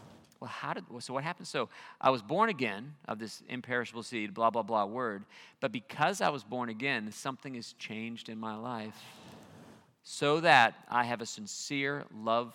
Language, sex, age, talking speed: English, male, 40-59, 180 wpm